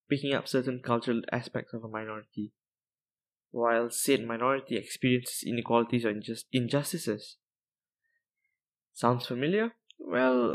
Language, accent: English, Malaysian